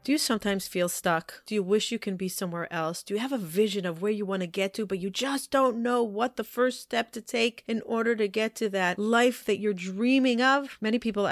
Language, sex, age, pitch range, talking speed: English, female, 30-49, 175-220 Hz, 260 wpm